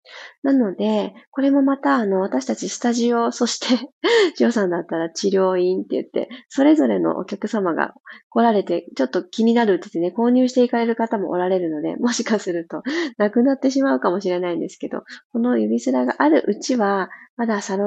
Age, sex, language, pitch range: 20-39, female, Japanese, 185-260 Hz